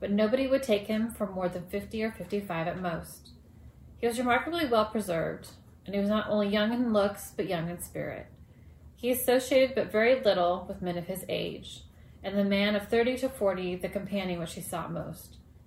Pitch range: 180-220 Hz